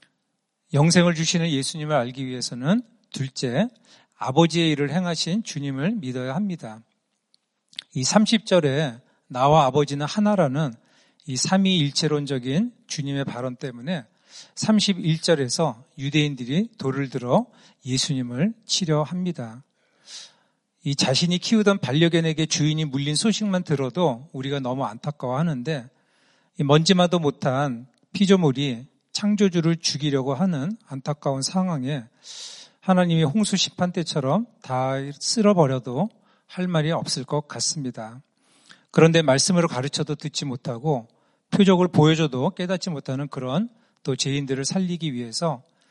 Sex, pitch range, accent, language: male, 135-190 Hz, native, Korean